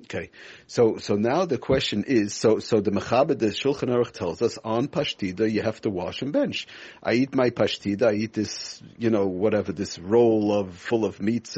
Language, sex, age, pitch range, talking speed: English, male, 50-69, 105-125 Hz, 205 wpm